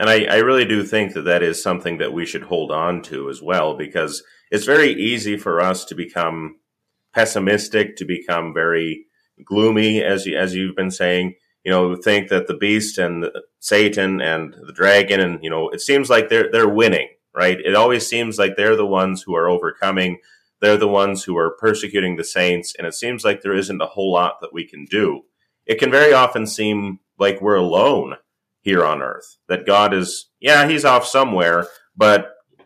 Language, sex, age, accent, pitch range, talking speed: English, male, 30-49, American, 90-115 Hz, 200 wpm